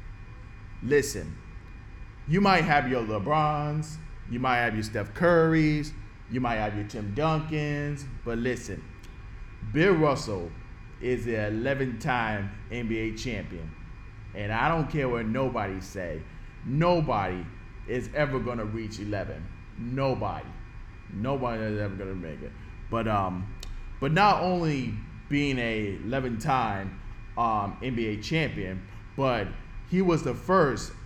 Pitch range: 105-130 Hz